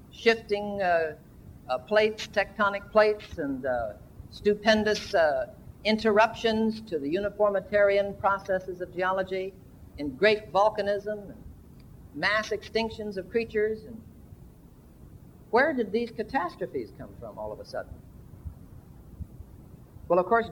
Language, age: English, 50-69